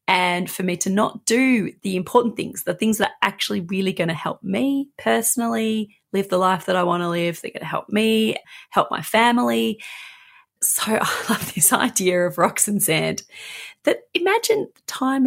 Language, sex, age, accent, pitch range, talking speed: English, female, 30-49, Australian, 185-255 Hz, 190 wpm